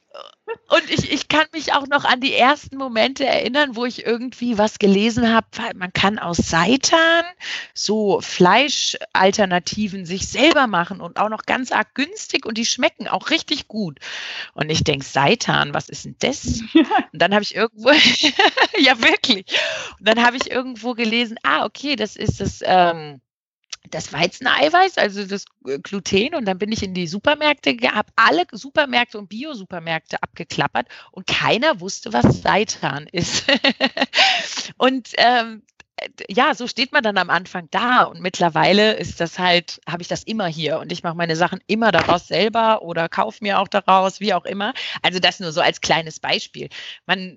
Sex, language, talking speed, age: female, German, 170 wpm, 40-59